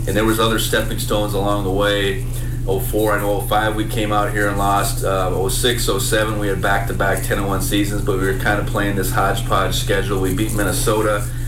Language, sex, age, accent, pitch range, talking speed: English, male, 30-49, American, 105-125 Hz, 205 wpm